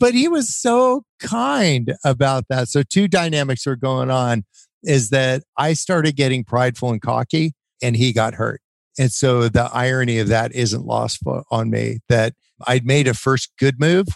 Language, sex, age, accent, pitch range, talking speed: English, male, 50-69, American, 110-135 Hz, 180 wpm